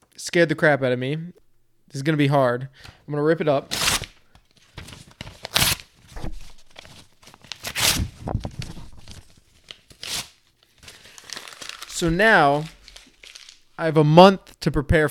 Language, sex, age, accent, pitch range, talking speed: English, male, 20-39, American, 130-155 Hz, 105 wpm